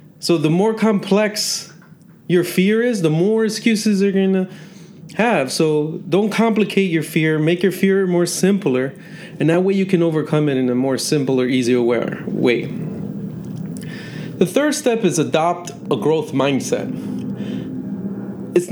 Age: 30-49